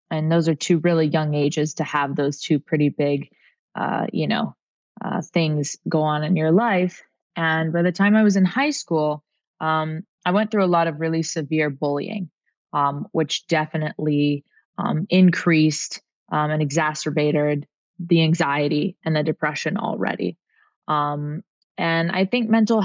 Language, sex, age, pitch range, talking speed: English, female, 20-39, 150-170 Hz, 160 wpm